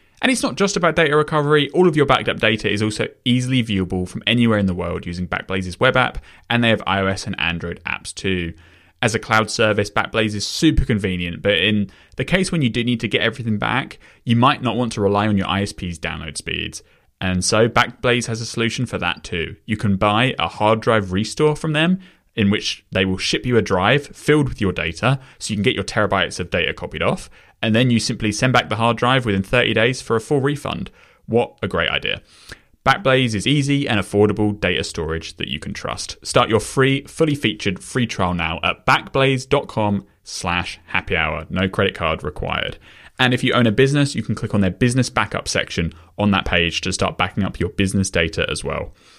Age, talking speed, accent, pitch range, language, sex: 20-39, 220 wpm, British, 95-125 Hz, English, male